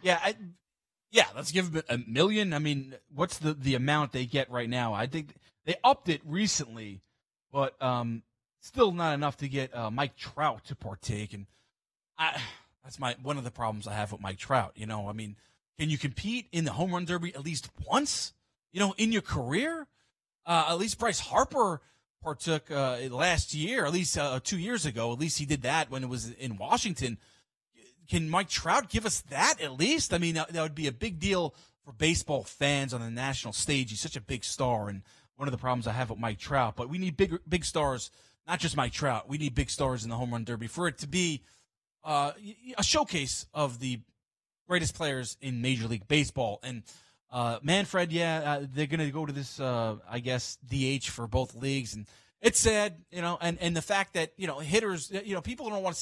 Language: English